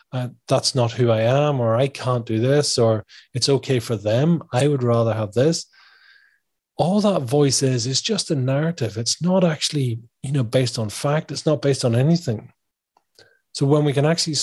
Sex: male